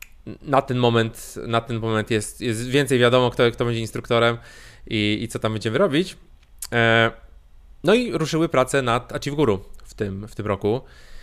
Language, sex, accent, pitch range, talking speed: Polish, male, native, 110-130 Hz, 170 wpm